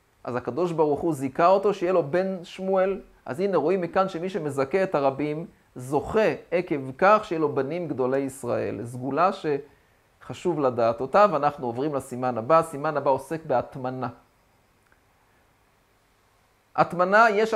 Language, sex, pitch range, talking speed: Hebrew, male, 130-180 Hz, 135 wpm